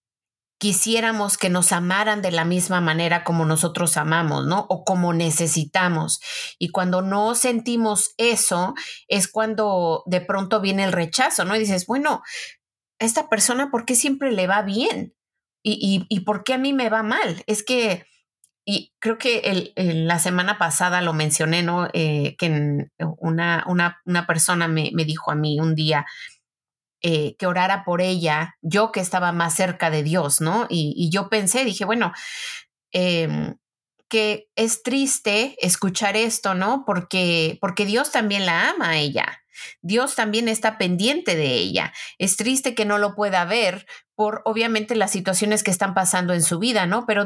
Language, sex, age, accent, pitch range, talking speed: Spanish, female, 30-49, Mexican, 170-215 Hz, 170 wpm